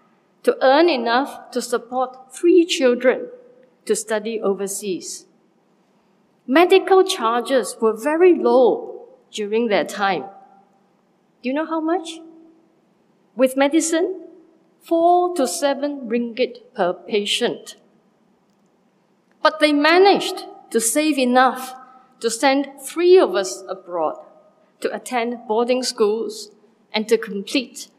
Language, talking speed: English, 105 wpm